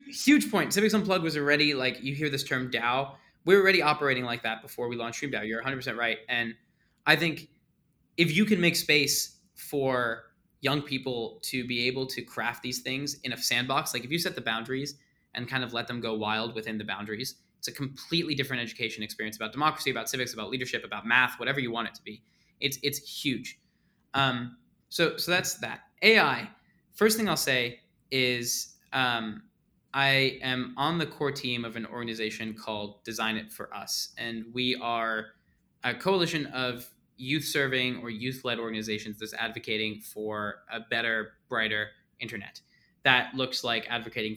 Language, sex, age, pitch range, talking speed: English, male, 20-39, 115-145 Hz, 175 wpm